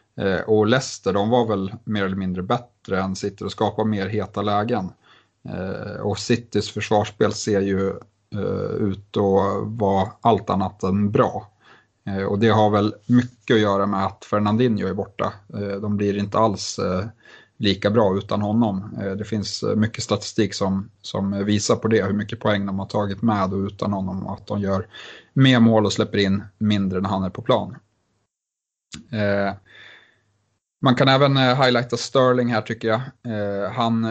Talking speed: 160 wpm